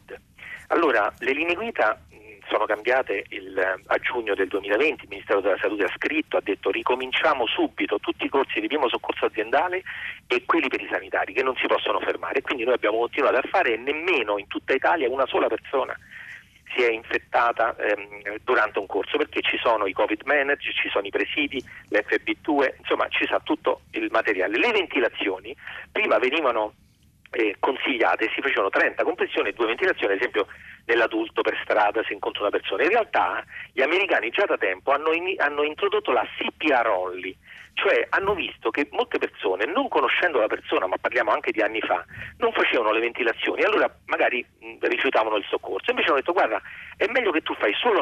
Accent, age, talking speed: native, 40-59, 185 wpm